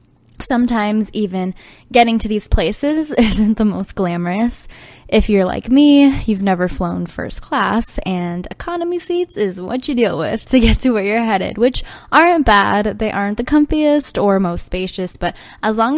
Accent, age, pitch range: American, 10-29, 180-245 Hz